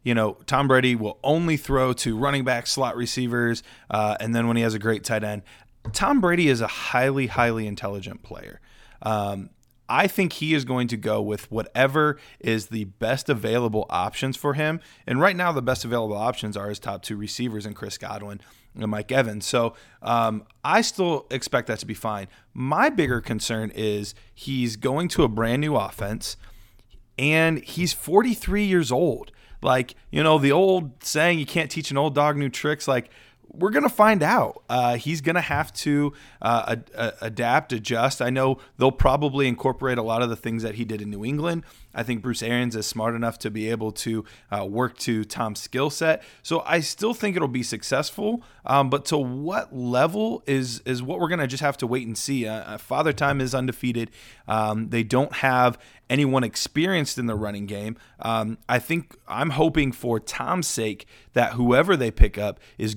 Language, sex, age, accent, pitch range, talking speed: English, male, 30-49, American, 110-140 Hz, 195 wpm